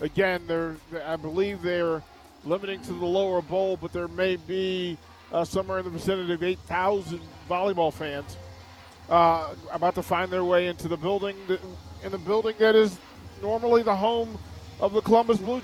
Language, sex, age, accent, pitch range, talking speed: English, male, 40-59, American, 165-205 Hz, 175 wpm